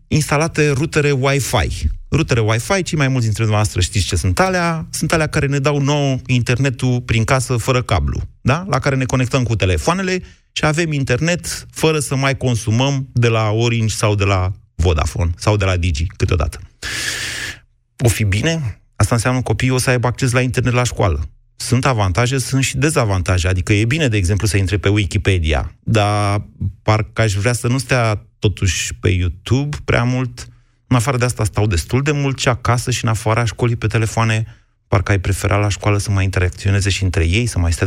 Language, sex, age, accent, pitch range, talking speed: Romanian, male, 30-49, native, 100-125 Hz, 195 wpm